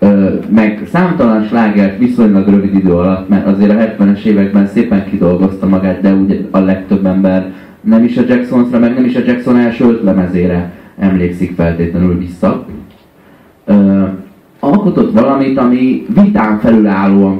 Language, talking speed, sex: Hungarian, 135 wpm, male